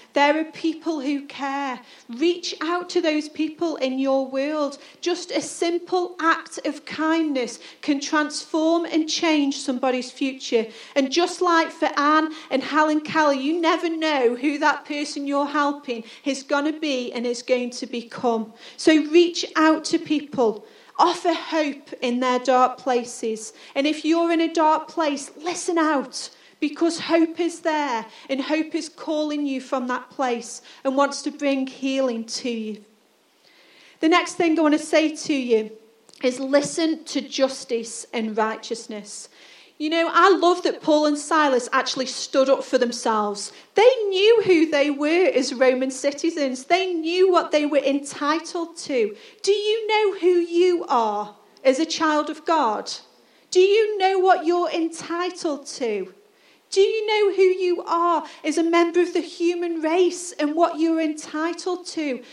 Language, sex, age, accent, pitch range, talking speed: English, female, 40-59, British, 265-340 Hz, 160 wpm